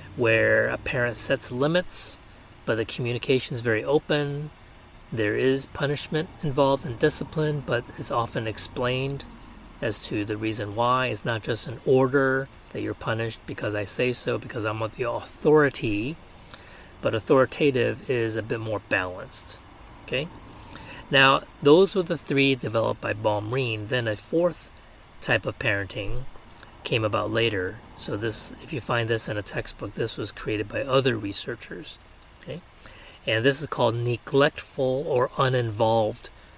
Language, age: English, 30-49